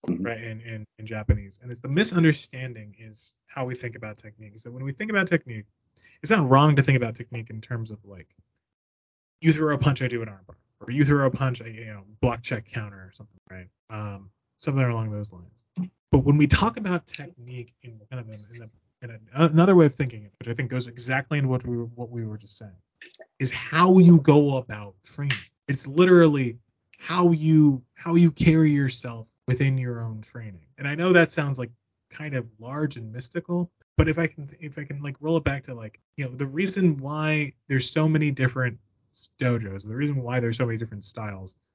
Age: 20-39